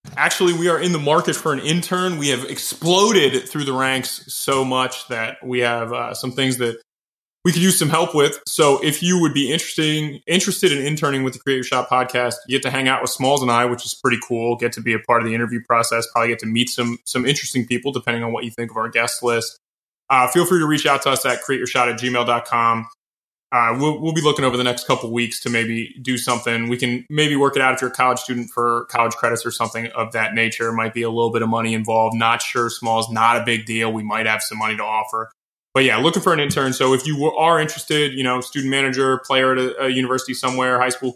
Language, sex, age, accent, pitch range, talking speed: English, male, 20-39, American, 120-140 Hz, 255 wpm